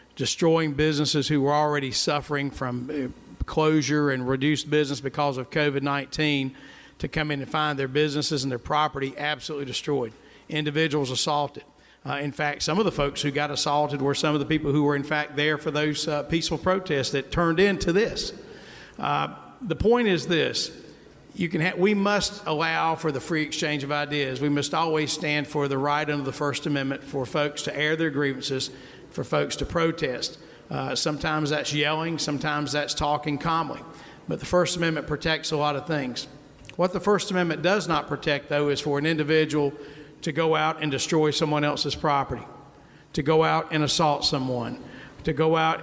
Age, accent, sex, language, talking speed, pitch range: 50-69, American, male, English, 185 wpm, 145-160 Hz